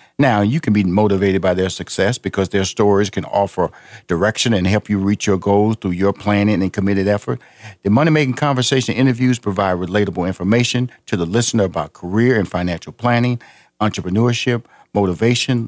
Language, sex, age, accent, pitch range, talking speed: English, male, 50-69, American, 100-135 Hz, 165 wpm